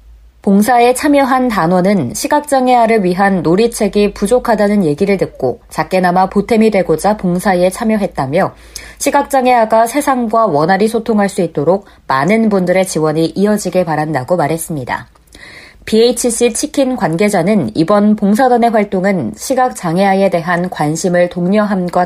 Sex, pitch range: female, 175-230 Hz